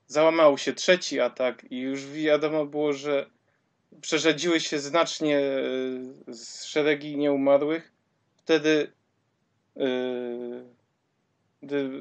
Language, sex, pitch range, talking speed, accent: Polish, male, 135-155 Hz, 90 wpm, native